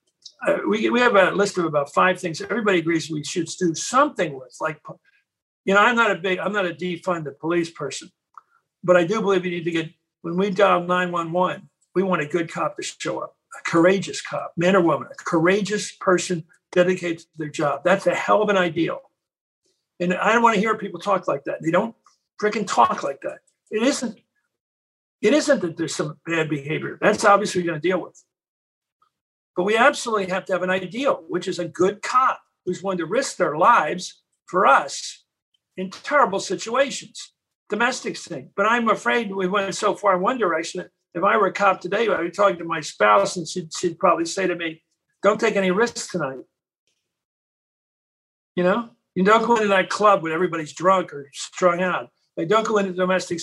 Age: 60-79